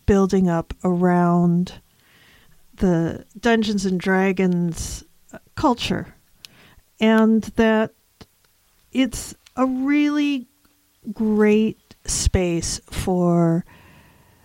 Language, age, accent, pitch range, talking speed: English, 50-69, American, 185-225 Hz, 65 wpm